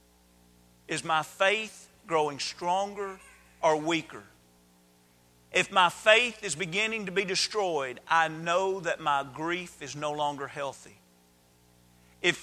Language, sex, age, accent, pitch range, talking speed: English, male, 40-59, American, 135-210 Hz, 120 wpm